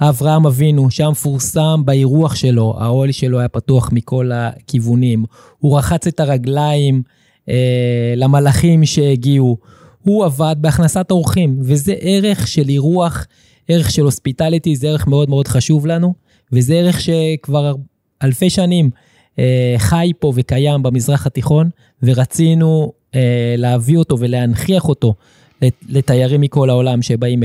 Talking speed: 125 wpm